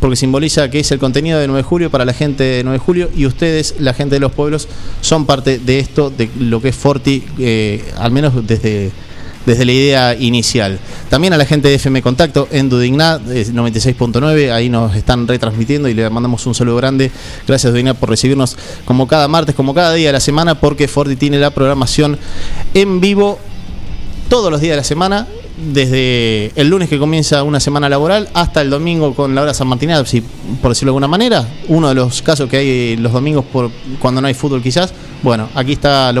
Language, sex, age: English, male, 20-39